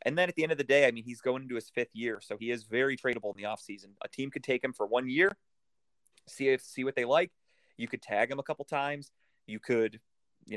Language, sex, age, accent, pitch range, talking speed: English, male, 30-49, American, 115-135 Hz, 275 wpm